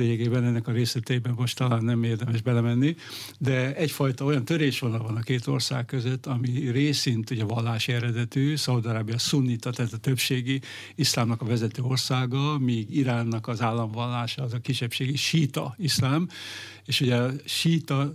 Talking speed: 150 wpm